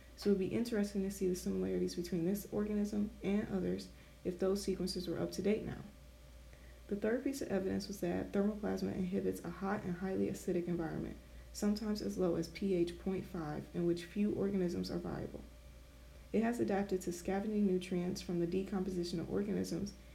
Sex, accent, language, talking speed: female, American, English, 180 wpm